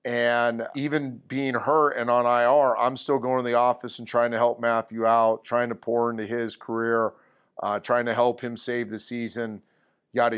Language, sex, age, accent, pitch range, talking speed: English, male, 40-59, American, 115-125 Hz, 195 wpm